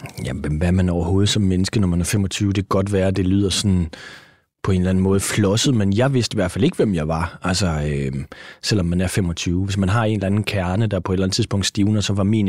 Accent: native